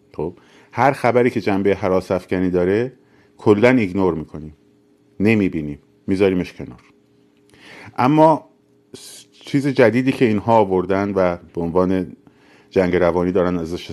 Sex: male